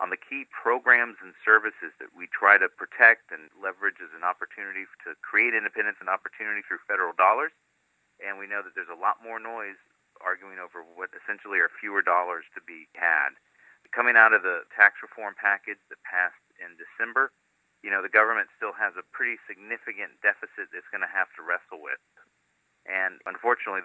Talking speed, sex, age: 180 wpm, male, 40-59